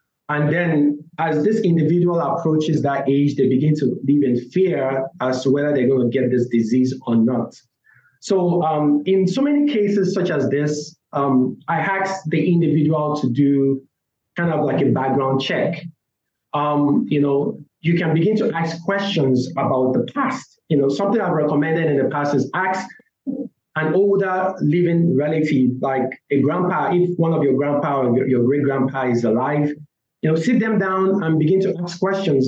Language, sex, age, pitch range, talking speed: English, male, 30-49, 140-180 Hz, 180 wpm